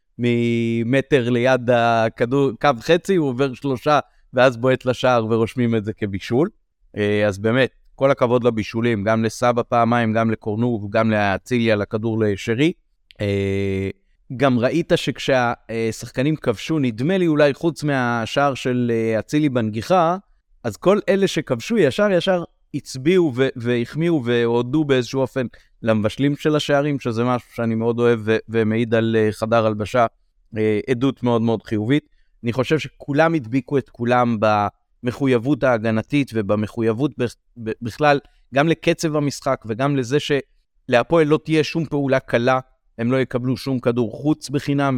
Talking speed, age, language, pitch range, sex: 130 wpm, 30-49, Hebrew, 115-140 Hz, male